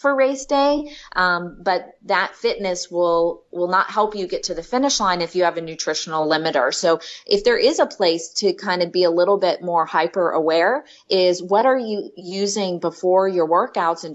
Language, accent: English, American